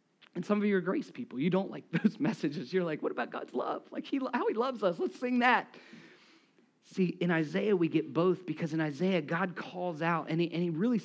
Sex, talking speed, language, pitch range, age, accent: male, 235 wpm, English, 175-255 Hz, 40-59, American